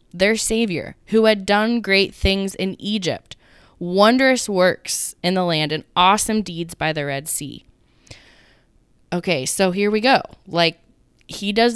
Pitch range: 180-220 Hz